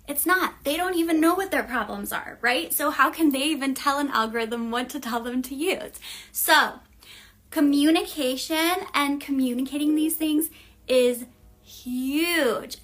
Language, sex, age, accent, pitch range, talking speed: English, female, 20-39, American, 260-320 Hz, 155 wpm